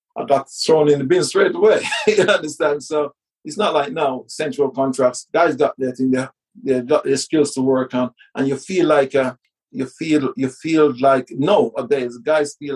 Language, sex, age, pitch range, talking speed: English, male, 50-69, 130-170 Hz, 200 wpm